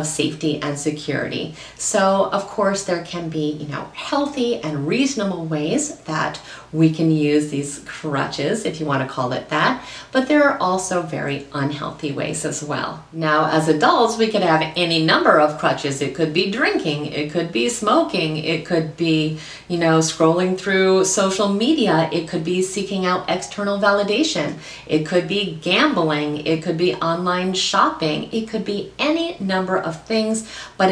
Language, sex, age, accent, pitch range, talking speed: English, female, 40-59, American, 155-200 Hz, 170 wpm